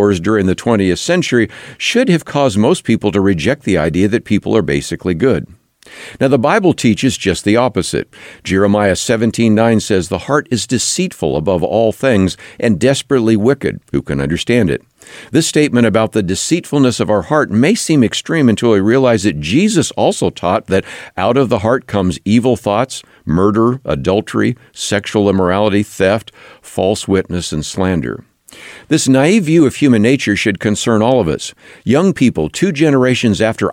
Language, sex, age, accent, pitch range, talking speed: English, male, 50-69, American, 95-130 Hz, 165 wpm